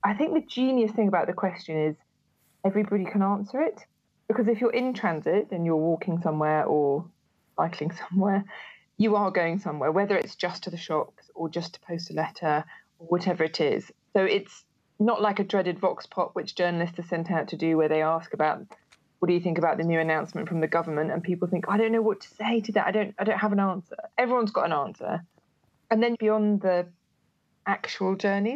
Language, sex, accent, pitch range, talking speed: English, female, British, 165-215 Hz, 215 wpm